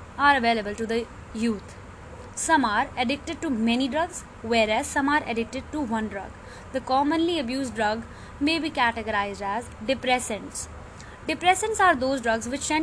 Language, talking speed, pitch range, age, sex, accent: English, 155 wpm, 225-290 Hz, 20-39, female, Indian